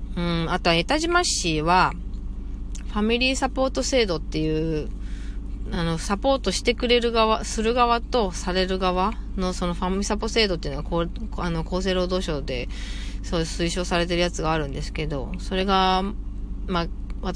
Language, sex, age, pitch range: Japanese, female, 30-49, 155-205 Hz